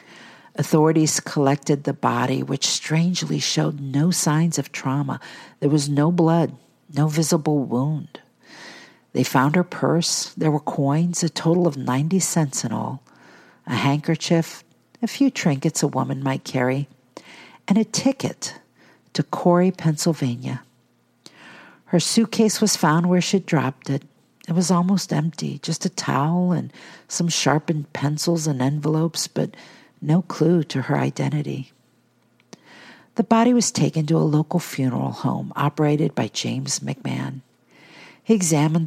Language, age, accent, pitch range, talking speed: English, 50-69, American, 140-170 Hz, 135 wpm